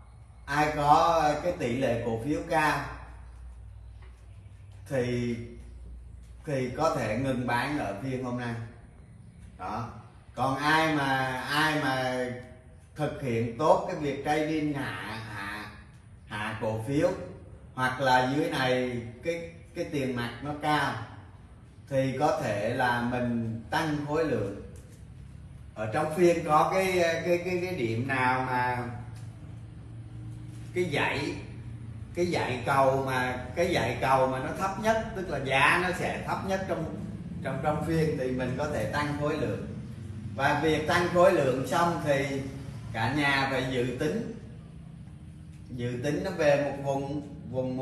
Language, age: Vietnamese, 30-49